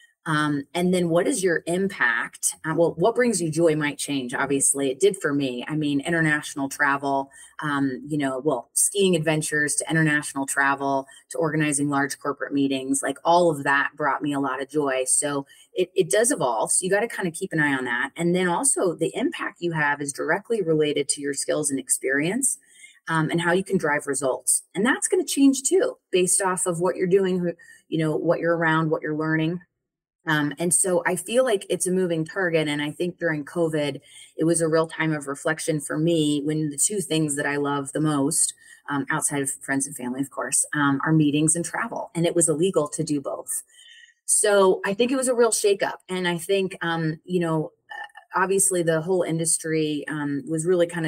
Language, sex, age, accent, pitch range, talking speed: English, female, 30-49, American, 145-185 Hz, 215 wpm